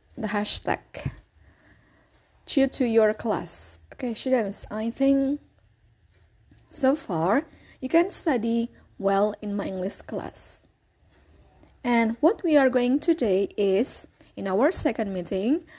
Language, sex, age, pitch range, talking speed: Indonesian, female, 20-39, 195-285 Hz, 120 wpm